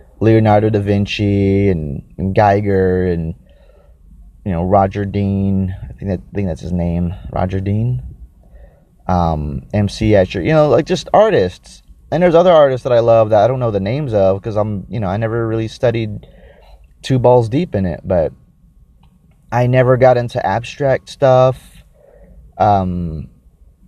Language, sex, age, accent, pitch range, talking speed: English, male, 30-49, American, 85-115 Hz, 160 wpm